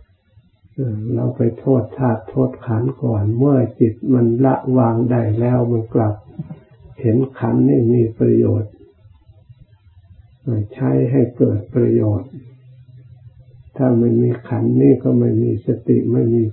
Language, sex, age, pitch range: Thai, male, 60-79, 105-125 Hz